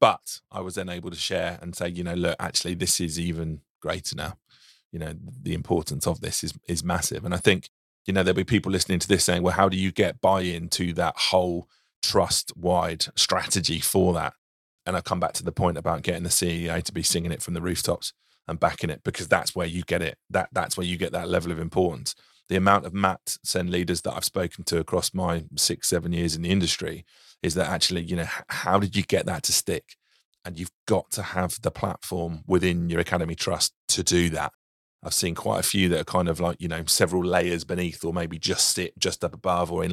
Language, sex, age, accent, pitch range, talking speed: English, male, 30-49, British, 85-95 Hz, 235 wpm